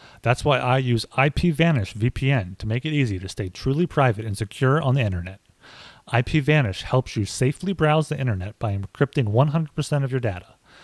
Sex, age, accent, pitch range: male, 30-49, American, 110-145 Hz